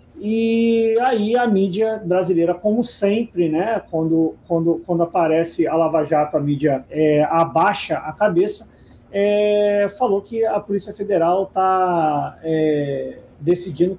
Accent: Brazilian